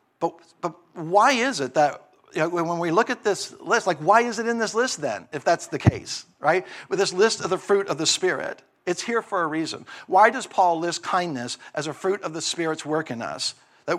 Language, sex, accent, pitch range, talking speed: English, male, American, 140-195 Hz, 240 wpm